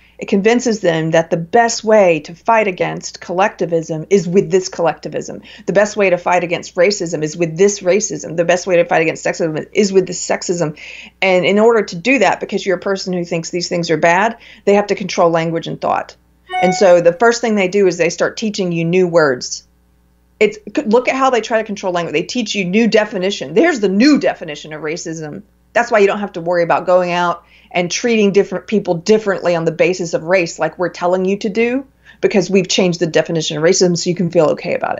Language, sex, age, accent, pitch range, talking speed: English, female, 40-59, American, 170-205 Hz, 230 wpm